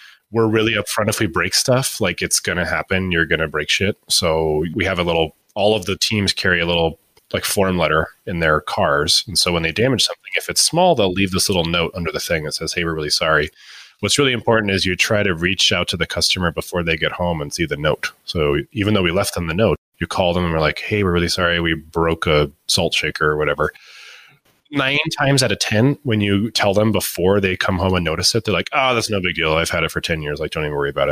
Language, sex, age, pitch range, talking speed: English, male, 30-49, 85-130 Hz, 265 wpm